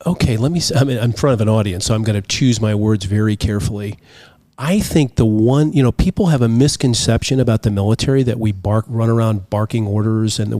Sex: male